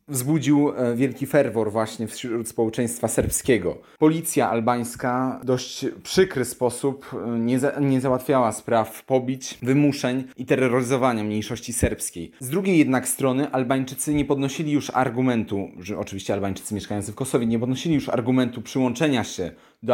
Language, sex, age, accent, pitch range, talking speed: Polish, male, 30-49, native, 110-135 Hz, 140 wpm